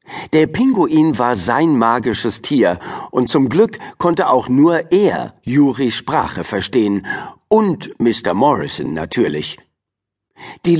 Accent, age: German, 50-69